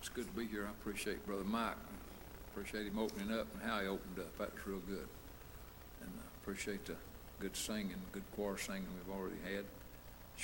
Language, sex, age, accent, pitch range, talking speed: English, male, 60-79, American, 80-105 Hz, 200 wpm